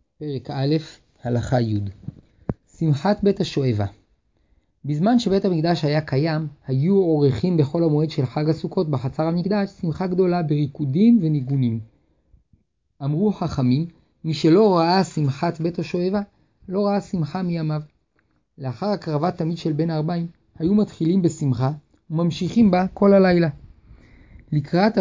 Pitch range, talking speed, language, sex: 140-180 Hz, 120 wpm, Hebrew, male